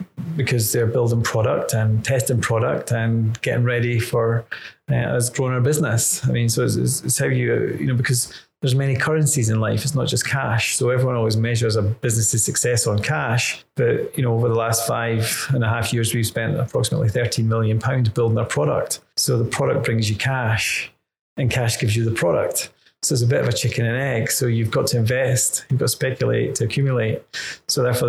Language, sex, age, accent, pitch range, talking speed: English, male, 30-49, British, 115-130 Hz, 210 wpm